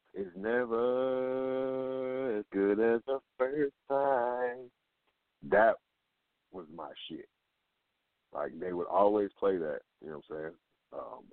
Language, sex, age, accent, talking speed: English, male, 30-49, American, 125 wpm